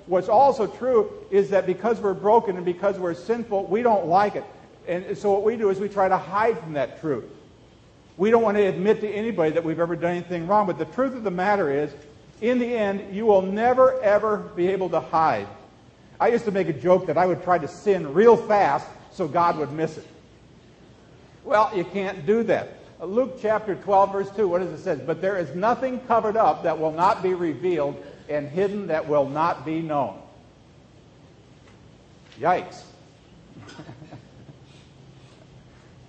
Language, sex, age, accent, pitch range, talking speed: English, male, 50-69, American, 165-215 Hz, 185 wpm